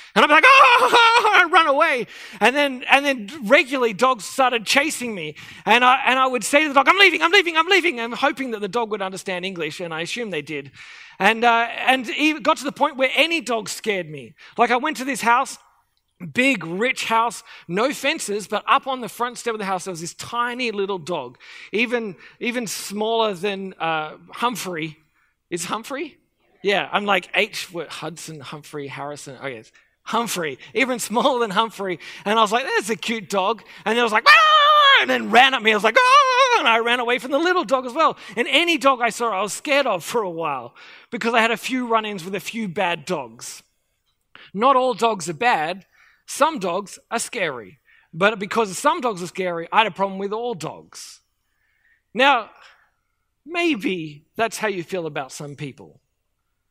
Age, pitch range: 30-49, 185-275 Hz